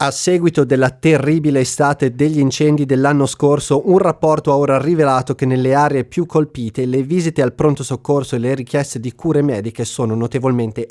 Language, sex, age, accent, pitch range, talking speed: Italian, male, 30-49, native, 130-160 Hz, 175 wpm